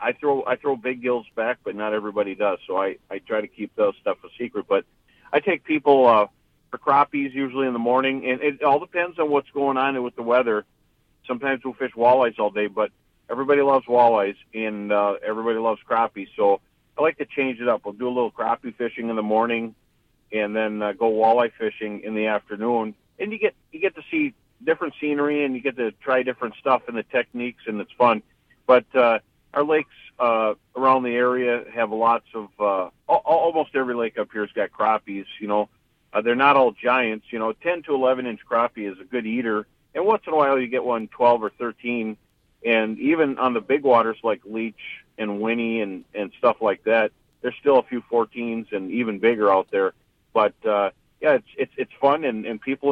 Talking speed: 215 wpm